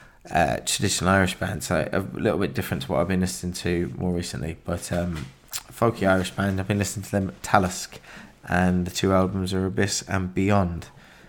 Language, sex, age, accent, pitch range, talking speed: English, male, 20-39, British, 90-100 Hz, 190 wpm